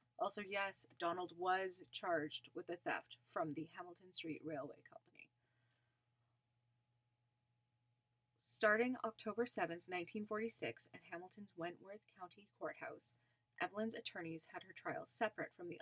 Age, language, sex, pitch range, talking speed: 20-39, English, female, 150-220 Hz, 120 wpm